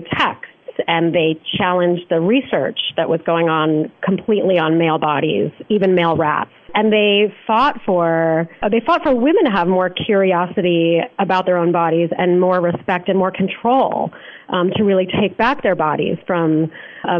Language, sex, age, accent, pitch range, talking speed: English, female, 30-49, American, 170-225 Hz, 170 wpm